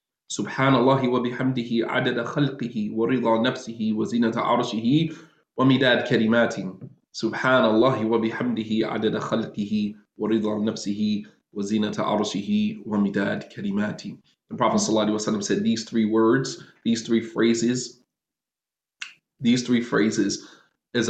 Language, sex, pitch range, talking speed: English, male, 110-130 Hz, 90 wpm